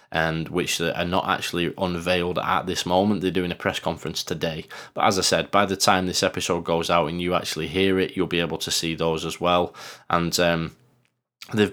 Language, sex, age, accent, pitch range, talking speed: English, male, 20-39, British, 85-100 Hz, 215 wpm